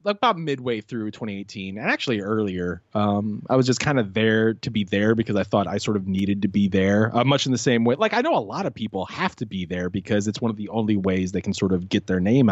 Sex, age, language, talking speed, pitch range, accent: male, 20-39, English, 280 wpm, 95-125 Hz, American